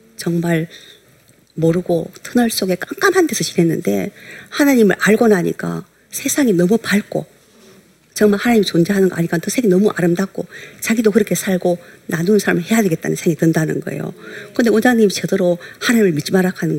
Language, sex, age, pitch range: Korean, female, 50-69, 175-215 Hz